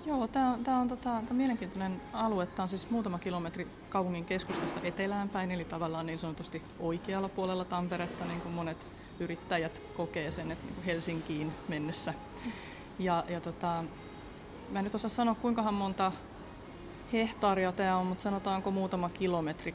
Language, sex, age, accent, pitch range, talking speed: Finnish, female, 30-49, native, 170-195 Hz, 155 wpm